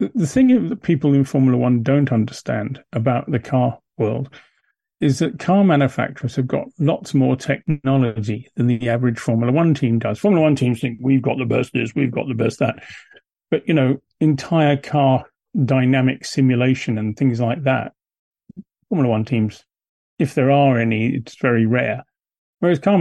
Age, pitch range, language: 40-59, 120-150 Hz, English